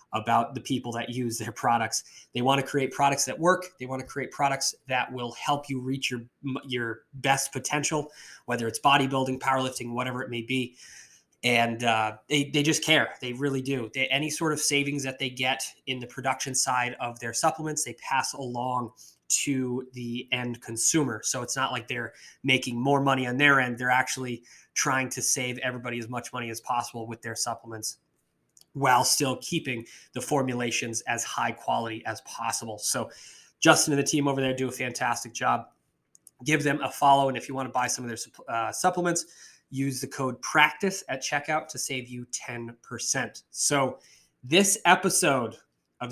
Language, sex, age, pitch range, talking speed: English, male, 20-39, 120-145 Hz, 185 wpm